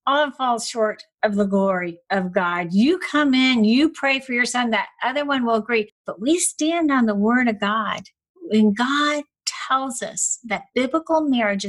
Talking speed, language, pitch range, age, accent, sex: 185 wpm, English, 225-295 Hz, 50-69, American, female